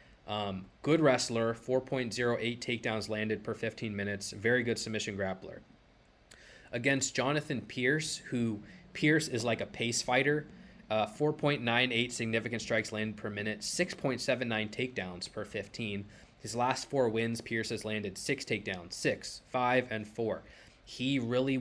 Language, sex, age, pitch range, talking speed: English, male, 20-39, 105-130 Hz, 135 wpm